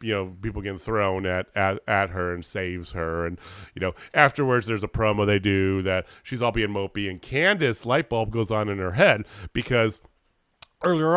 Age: 40-59